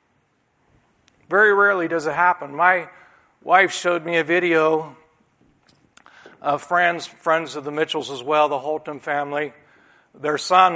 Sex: male